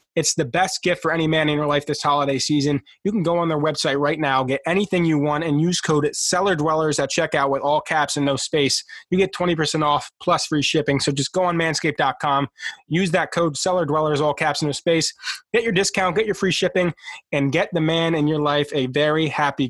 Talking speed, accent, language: 230 wpm, American, English